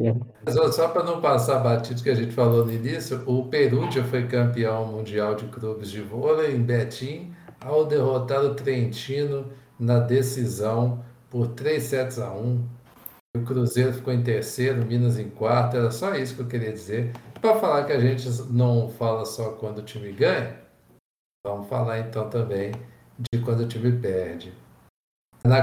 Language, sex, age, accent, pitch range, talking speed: Portuguese, male, 60-79, Brazilian, 115-135 Hz, 170 wpm